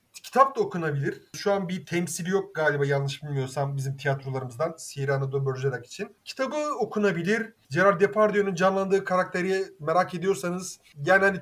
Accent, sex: native, male